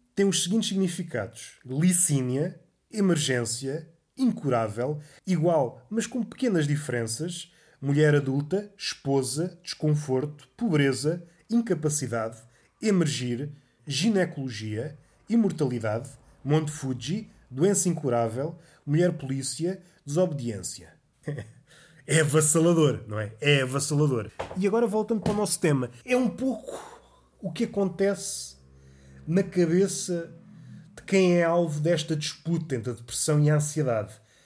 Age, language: 20-39, Portuguese